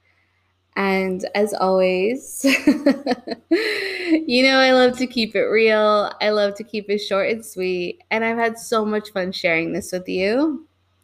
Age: 20-39